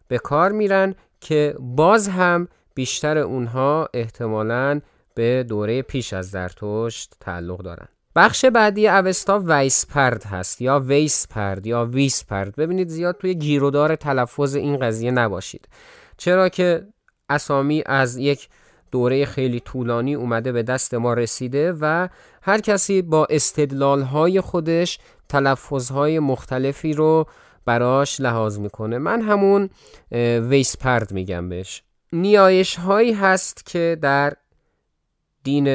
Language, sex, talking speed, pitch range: Persian, male, 115 wpm, 115-155 Hz